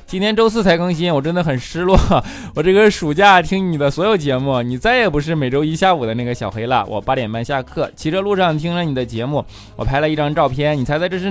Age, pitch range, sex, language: 20-39, 130-215 Hz, male, Chinese